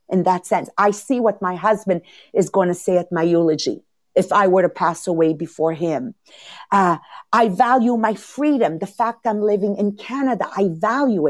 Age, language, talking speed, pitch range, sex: 50-69, English, 190 wpm, 190-250 Hz, female